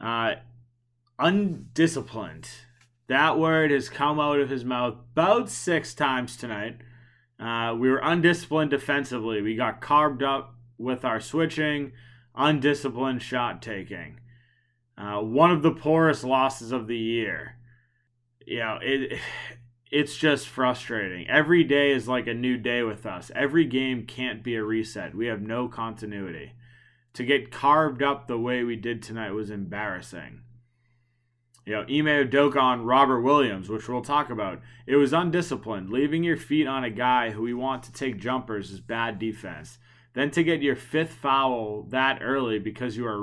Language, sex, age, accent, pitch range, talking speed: English, male, 20-39, American, 115-140 Hz, 160 wpm